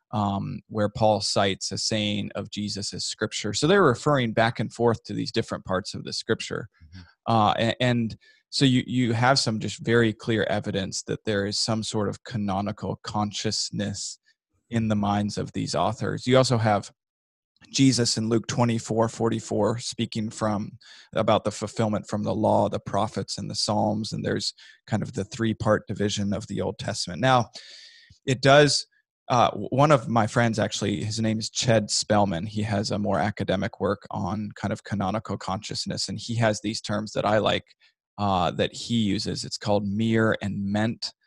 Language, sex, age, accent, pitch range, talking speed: English, male, 20-39, American, 105-115 Hz, 175 wpm